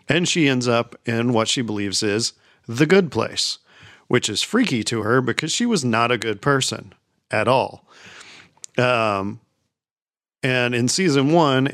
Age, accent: 40-59, American